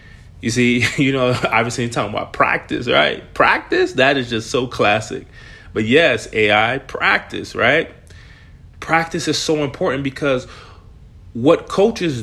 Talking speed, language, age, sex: 135 wpm, English, 30-49, male